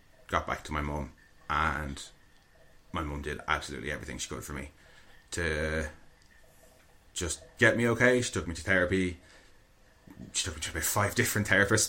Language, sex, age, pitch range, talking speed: English, male, 30-49, 80-100 Hz, 160 wpm